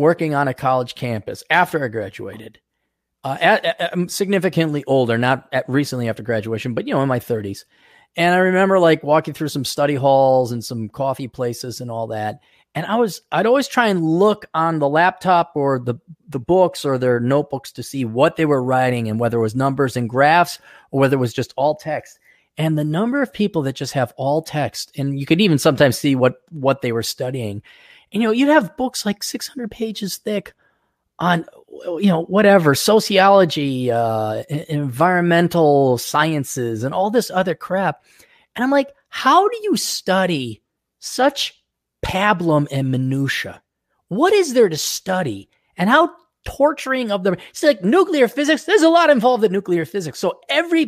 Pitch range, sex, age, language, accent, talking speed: 130-200 Hz, male, 30-49, English, American, 185 wpm